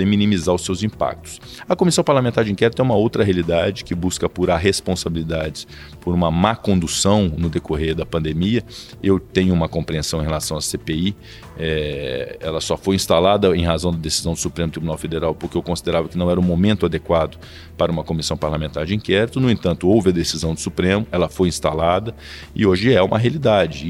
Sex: male